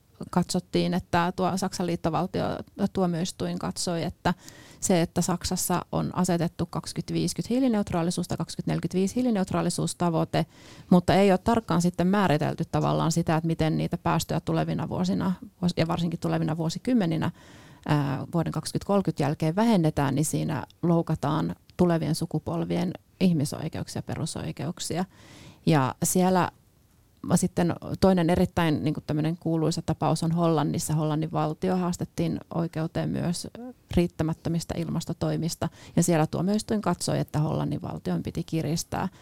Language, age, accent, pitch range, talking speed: Finnish, 30-49, native, 160-180 Hz, 115 wpm